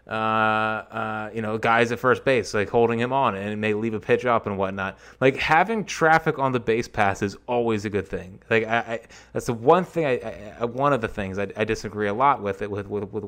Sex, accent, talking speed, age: male, American, 260 wpm, 20-39